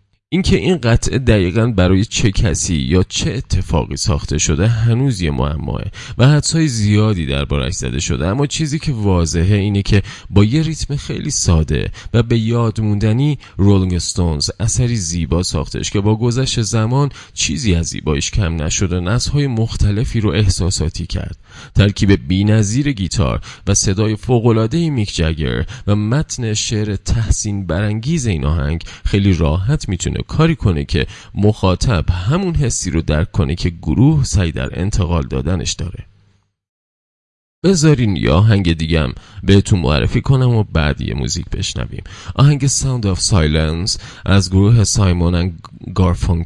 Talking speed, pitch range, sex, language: 145 wpm, 90-115 Hz, male, Persian